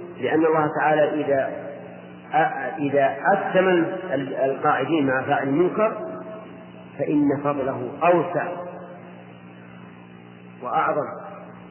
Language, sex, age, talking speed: English, male, 50-69, 70 wpm